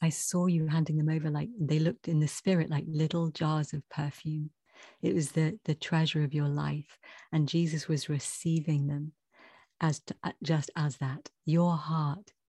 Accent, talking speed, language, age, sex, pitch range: British, 185 wpm, English, 30-49, female, 145-165 Hz